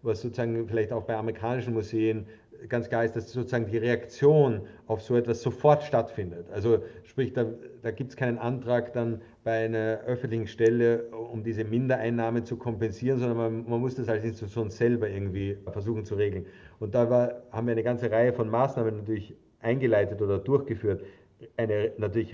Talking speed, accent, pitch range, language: 175 wpm, German, 110-120 Hz, German